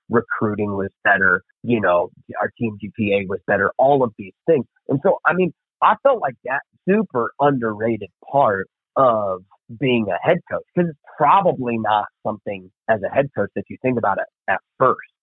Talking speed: 180 wpm